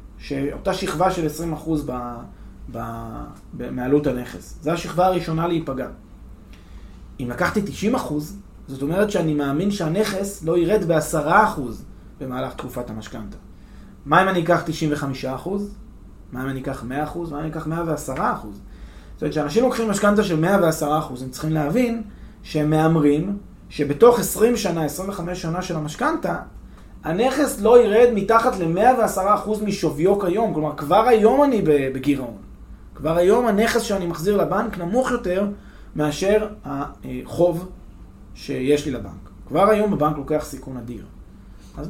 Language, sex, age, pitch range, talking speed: Hebrew, male, 20-39, 130-200 Hz, 125 wpm